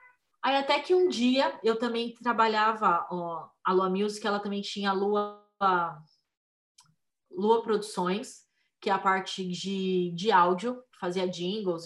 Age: 20-39